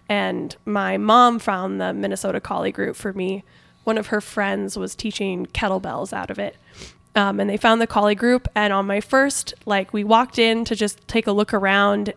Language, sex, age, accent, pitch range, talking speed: English, female, 10-29, American, 200-225 Hz, 200 wpm